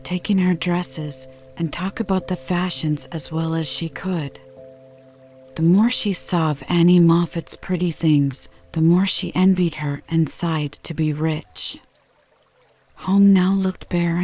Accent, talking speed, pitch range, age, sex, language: American, 150 wpm, 145-180 Hz, 40-59, female, English